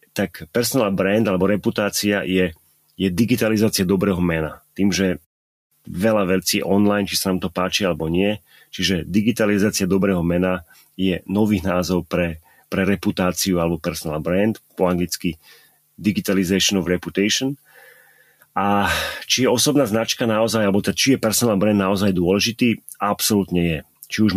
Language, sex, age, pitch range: Slovak, male, 30-49, 90-105 Hz